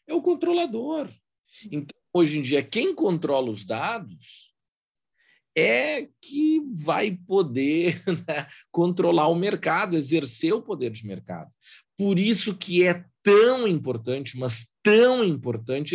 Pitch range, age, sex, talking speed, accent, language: 120-180 Hz, 40-59, male, 125 wpm, Brazilian, Portuguese